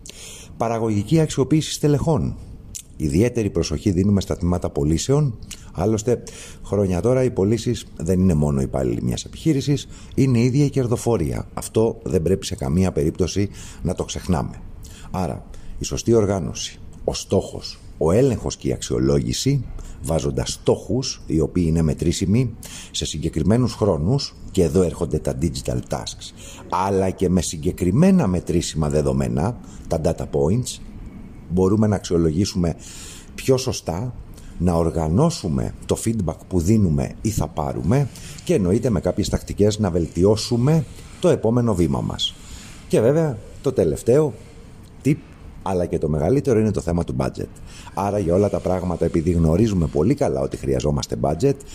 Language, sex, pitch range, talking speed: Greek, male, 85-110 Hz, 140 wpm